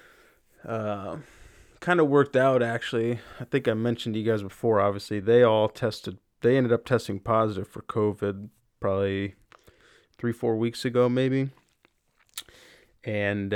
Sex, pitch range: male, 100-115 Hz